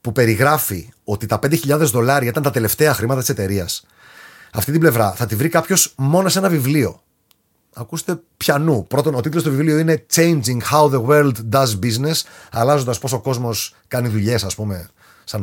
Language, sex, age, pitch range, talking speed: Greek, male, 30-49, 120-195 Hz, 180 wpm